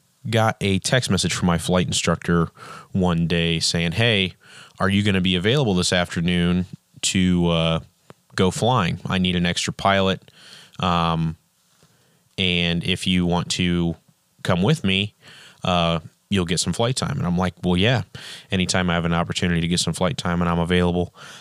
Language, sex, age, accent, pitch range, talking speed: English, male, 20-39, American, 90-110 Hz, 175 wpm